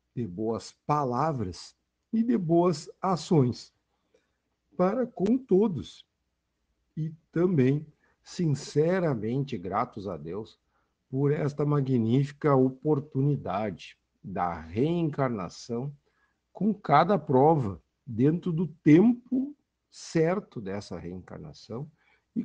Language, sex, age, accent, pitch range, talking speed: Portuguese, male, 50-69, Brazilian, 115-160 Hz, 85 wpm